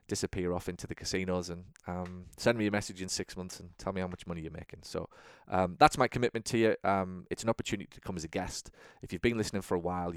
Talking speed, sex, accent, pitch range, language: 265 wpm, male, British, 90-105 Hz, English